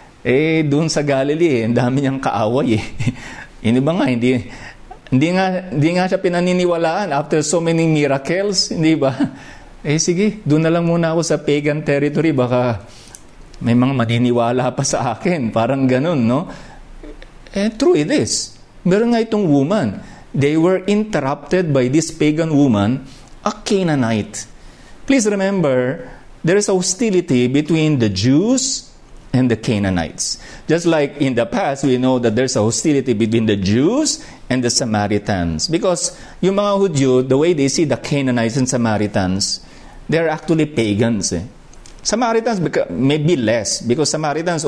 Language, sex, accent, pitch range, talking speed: English, male, Filipino, 125-170 Hz, 150 wpm